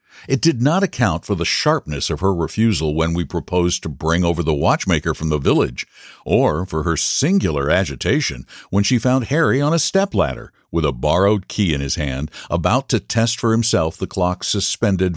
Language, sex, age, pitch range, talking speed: English, male, 60-79, 80-115 Hz, 190 wpm